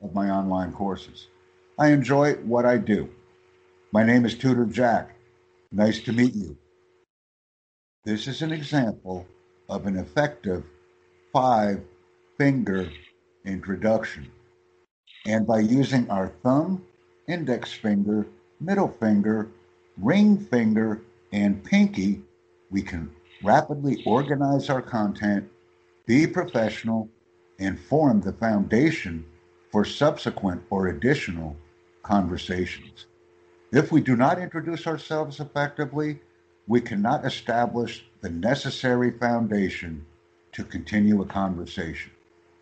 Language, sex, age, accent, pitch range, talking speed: English, male, 60-79, American, 90-120 Hz, 105 wpm